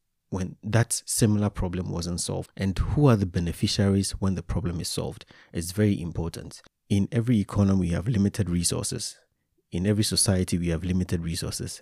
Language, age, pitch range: English, 30-49, 90-115 Hz